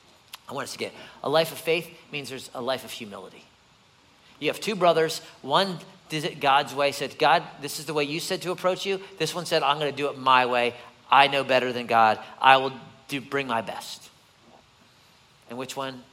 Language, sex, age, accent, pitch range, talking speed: English, male, 40-59, American, 120-155 Hz, 220 wpm